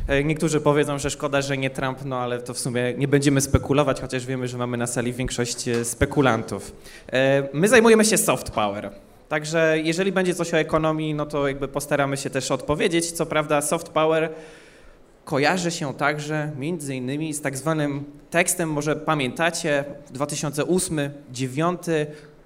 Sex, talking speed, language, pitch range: male, 150 wpm, Polish, 135-175 Hz